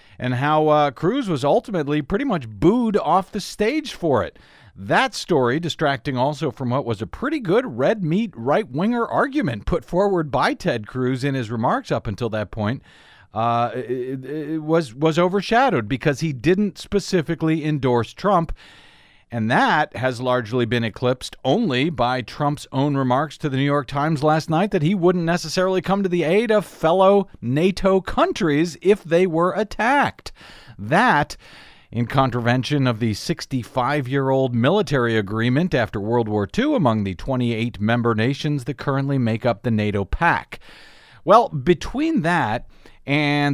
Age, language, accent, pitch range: 50-69, English, American, 125-175 Hz